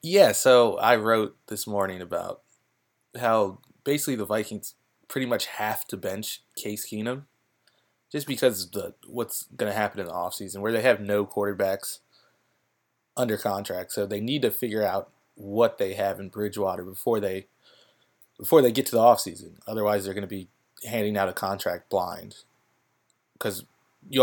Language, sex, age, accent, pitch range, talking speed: English, male, 20-39, American, 100-120 Hz, 170 wpm